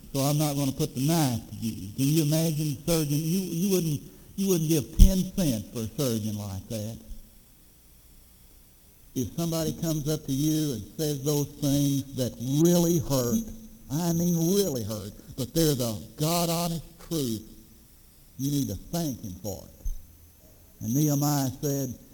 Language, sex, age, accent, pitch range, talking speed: English, male, 60-79, American, 105-160 Hz, 165 wpm